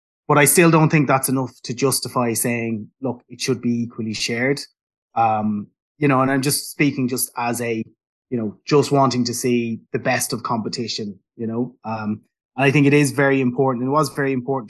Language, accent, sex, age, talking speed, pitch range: English, Irish, male, 20-39, 210 wpm, 120-135 Hz